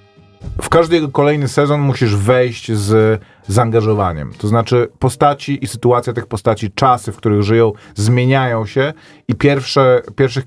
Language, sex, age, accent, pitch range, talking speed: Polish, male, 40-59, native, 110-145 Hz, 130 wpm